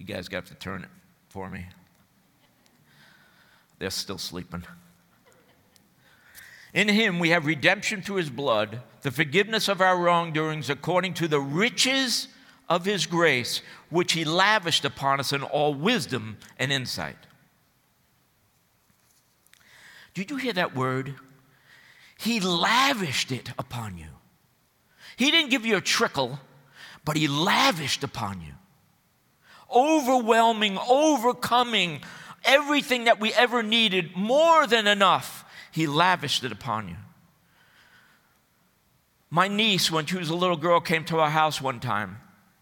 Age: 50-69